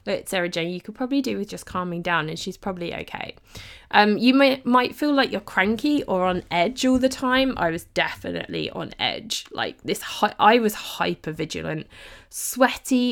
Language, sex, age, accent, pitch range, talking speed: English, female, 20-39, British, 180-245 Hz, 185 wpm